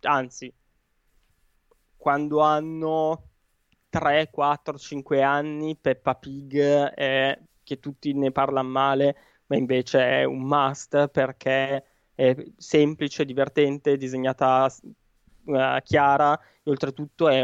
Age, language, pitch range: 20-39, Italian, 130-150 Hz